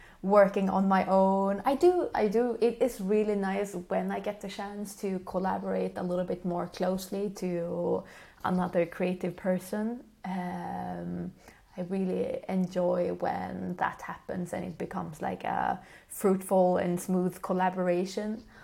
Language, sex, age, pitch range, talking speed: English, female, 20-39, 180-205 Hz, 140 wpm